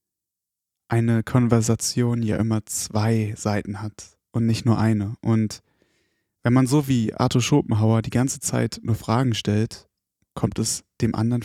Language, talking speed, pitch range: German, 145 wpm, 105-120 Hz